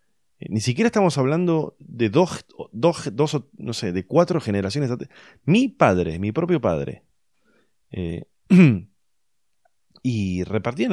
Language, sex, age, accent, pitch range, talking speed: Spanish, male, 30-49, Argentinian, 85-130 Hz, 125 wpm